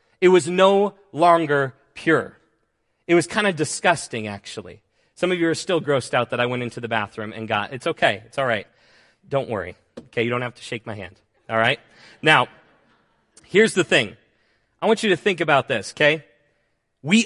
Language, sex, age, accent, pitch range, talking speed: English, male, 30-49, American, 115-175 Hz, 195 wpm